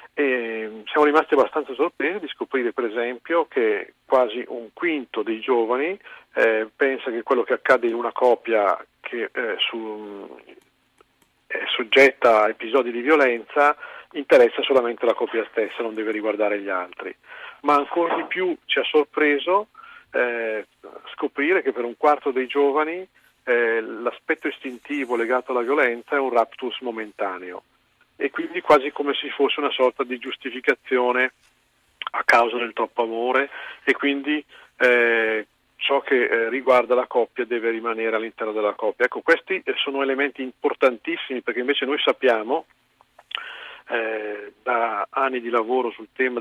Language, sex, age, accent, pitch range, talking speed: Italian, male, 50-69, native, 115-150 Hz, 145 wpm